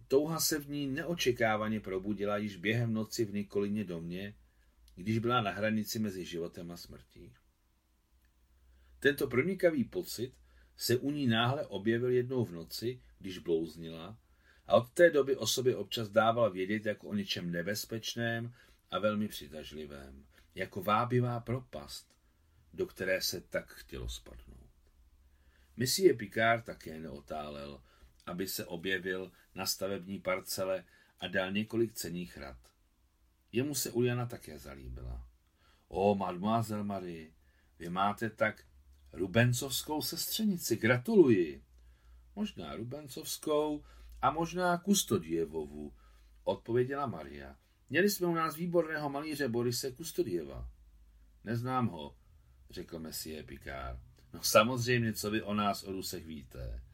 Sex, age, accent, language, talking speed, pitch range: male, 40-59, native, Czech, 120 wpm, 70-120 Hz